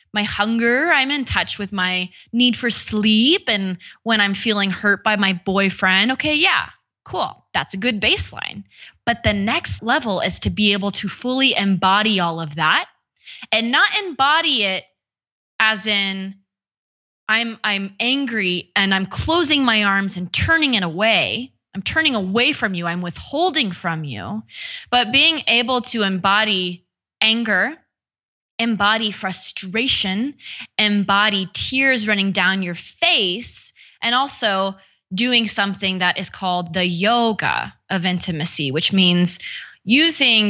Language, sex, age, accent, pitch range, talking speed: English, female, 20-39, American, 185-230 Hz, 140 wpm